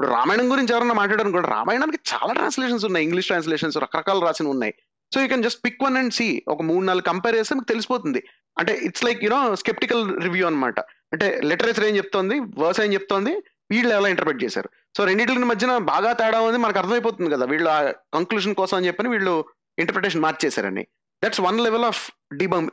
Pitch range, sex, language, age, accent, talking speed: 170-235 Hz, male, Telugu, 30-49, native, 185 wpm